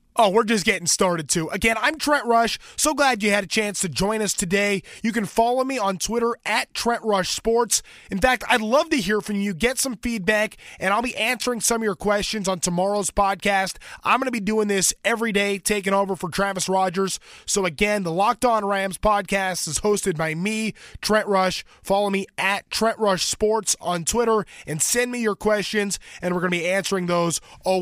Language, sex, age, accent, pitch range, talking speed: English, male, 20-39, American, 185-220 Hz, 215 wpm